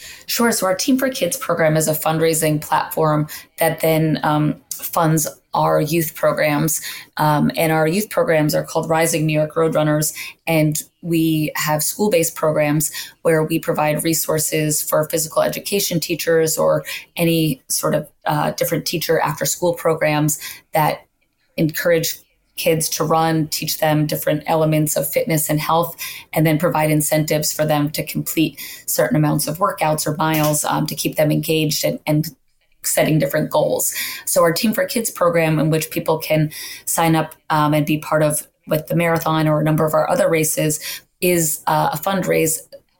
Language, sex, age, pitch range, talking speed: English, female, 20-39, 155-165 Hz, 170 wpm